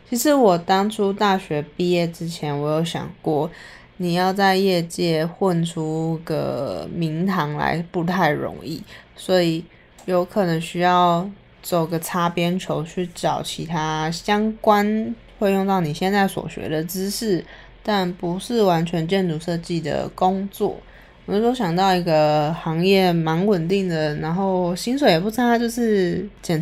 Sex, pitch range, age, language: female, 165-200 Hz, 20-39, Chinese